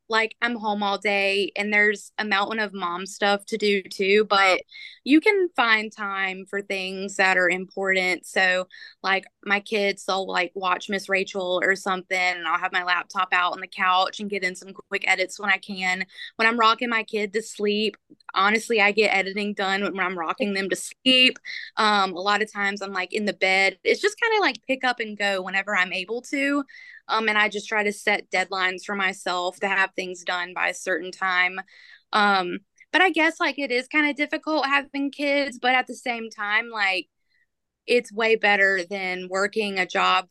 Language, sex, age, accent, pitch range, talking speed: English, female, 20-39, American, 190-230 Hz, 205 wpm